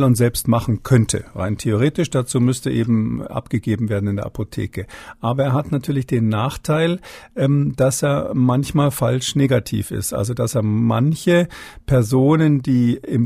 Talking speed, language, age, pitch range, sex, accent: 150 wpm, German, 50-69, 115-140 Hz, male, German